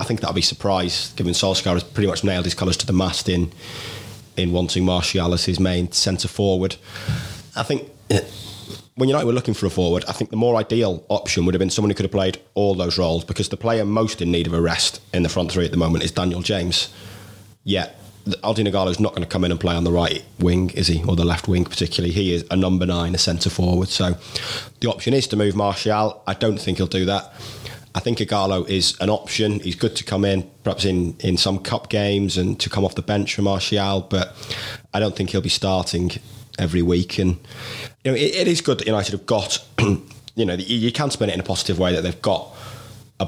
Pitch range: 90-110 Hz